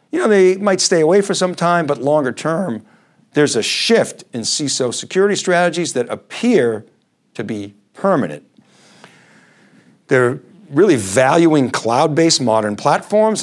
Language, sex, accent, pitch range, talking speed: English, male, American, 115-165 Hz, 135 wpm